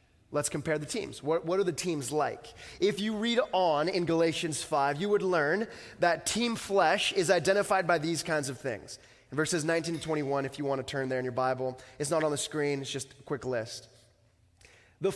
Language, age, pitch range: English, 20-39, 145-195 Hz